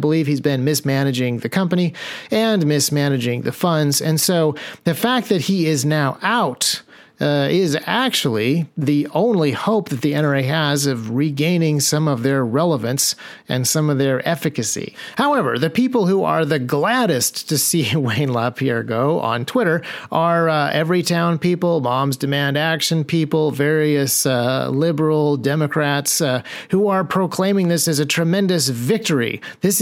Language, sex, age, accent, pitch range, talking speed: English, male, 40-59, American, 140-170 Hz, 155 wpm